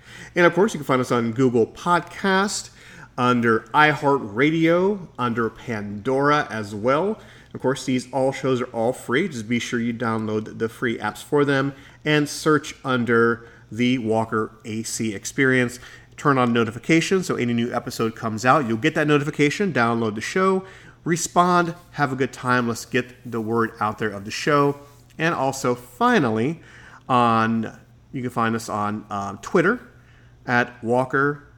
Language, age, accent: English, 40-59, American